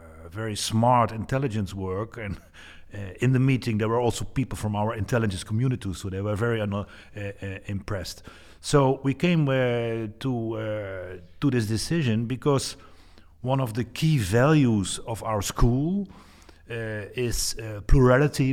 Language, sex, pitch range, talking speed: Dutch, male, 100-130 Hz, 150 wpm